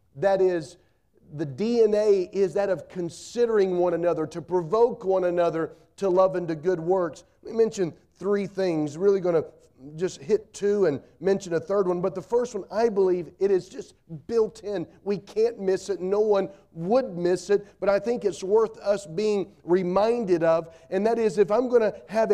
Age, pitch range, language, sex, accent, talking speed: 40-59, 165-215 Hz, English, male, American, 195 wpm